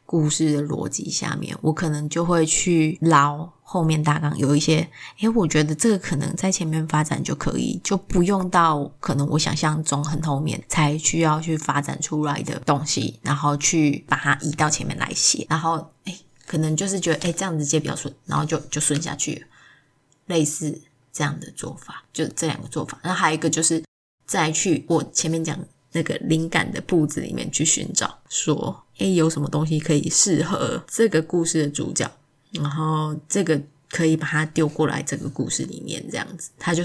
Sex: female